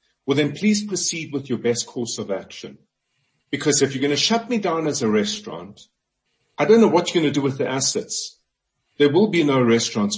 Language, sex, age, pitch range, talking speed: English, male, 50-69, 120-180 Hz, 220 wpm